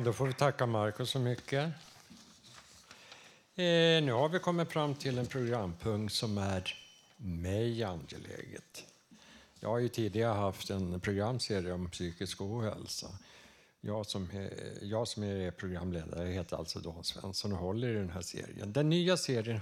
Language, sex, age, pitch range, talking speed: Swedish, male, 60-79, 95-120 Hz, 155 wpm